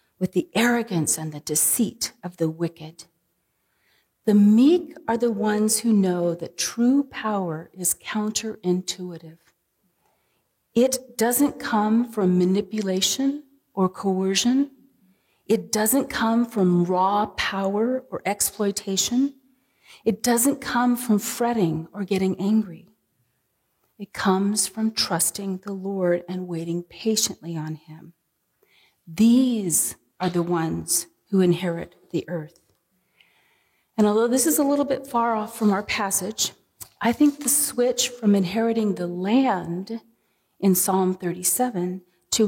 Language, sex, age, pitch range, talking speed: English, female, 40-59, 180-230 Hz, 125 wpm